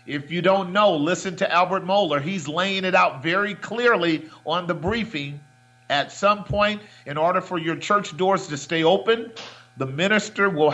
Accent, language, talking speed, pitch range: American, English, 180 wpm, 150-195 Hz